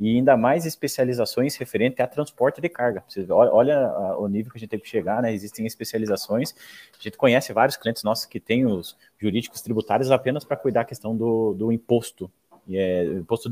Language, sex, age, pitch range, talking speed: Portuguese, male, 30-49, 110-145 Hz, 200 wpm